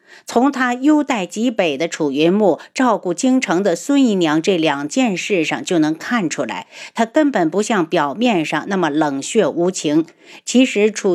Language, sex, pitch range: Chinese, female, 160-240 Hz